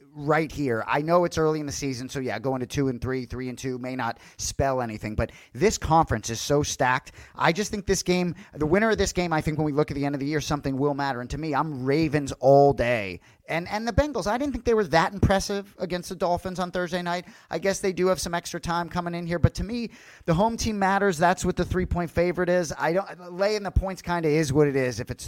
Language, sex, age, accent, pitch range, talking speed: English, male, 30-49, American, 135-175 Hz, 275 wpm